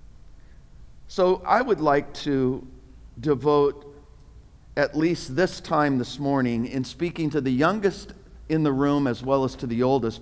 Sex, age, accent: male, 50-69, American